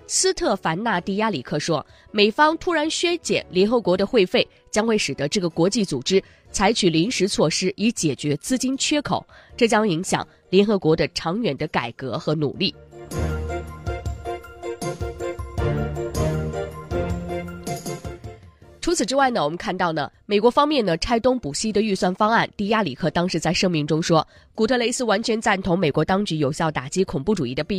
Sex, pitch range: female, 150-215 Hz